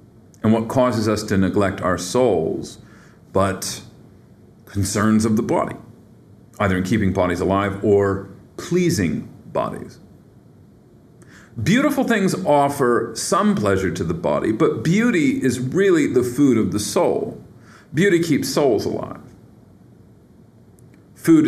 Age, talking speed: 40-59, 120 wpm